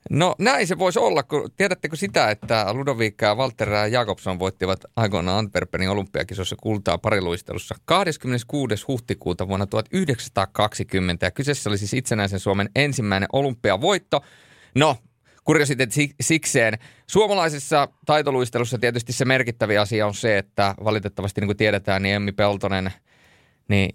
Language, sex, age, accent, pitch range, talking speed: Finnish, male, 30-49, native, 100-130 Hz, 135 wpm